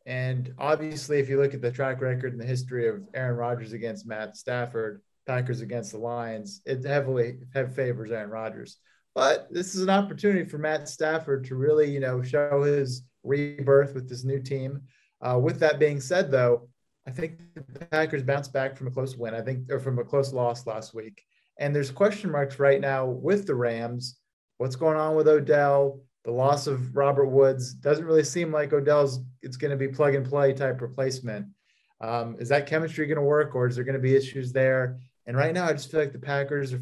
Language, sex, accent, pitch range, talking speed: English, male, American, 125-145 Hz, 210 wpm